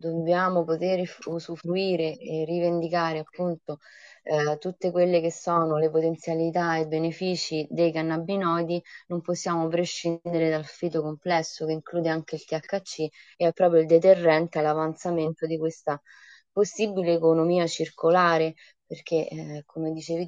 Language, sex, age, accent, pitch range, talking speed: Italian, female, 20-39, native, 160-180 Hz, 130 wpm